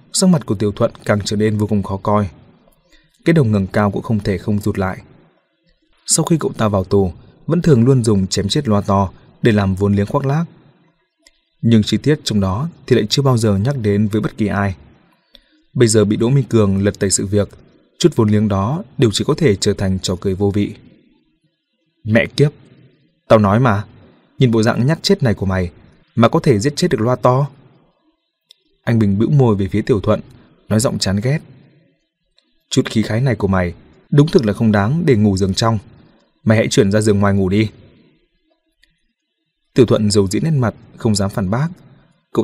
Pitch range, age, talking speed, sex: 100-140 Hz, 20-39, 210 wpm, male